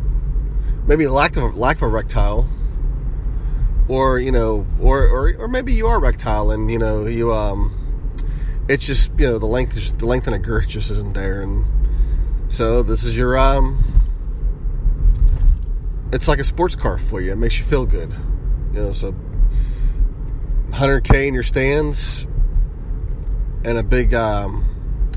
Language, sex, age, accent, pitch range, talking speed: English, male, 30-49, American, 95-125 Hz, 160 wpm